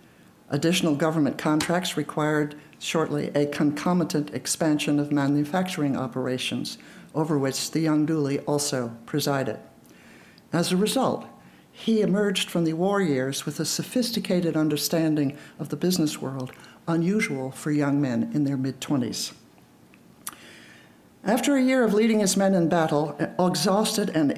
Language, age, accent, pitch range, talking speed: English, 60-79, American, 145-175 Hz, 130 wpm